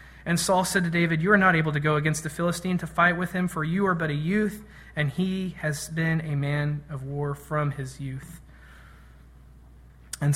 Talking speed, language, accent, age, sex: 210 wpm, English, American, 30-49, male